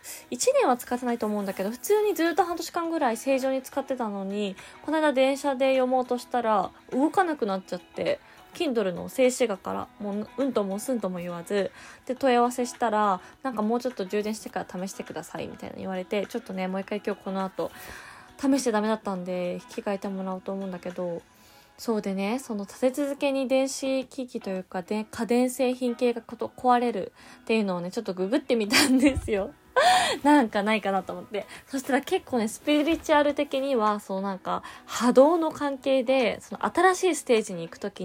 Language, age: Japanese, 20-39